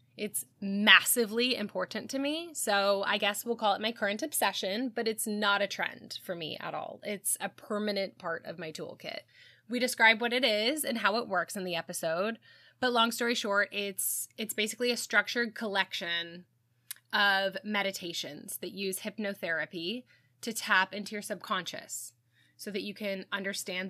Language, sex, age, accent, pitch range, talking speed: English, female, 20-39, American, 180-230 Hz, 170 wpm